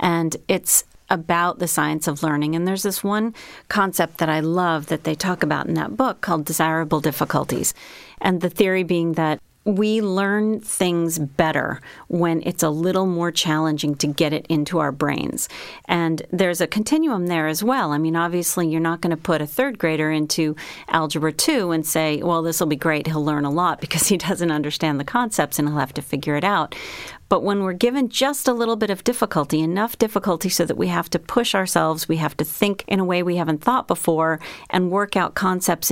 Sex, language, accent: female, English, American